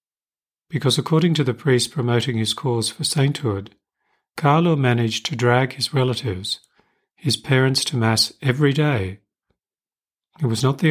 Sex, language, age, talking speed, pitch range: male, English, 40-59, 145 wpm, 110-140 Hz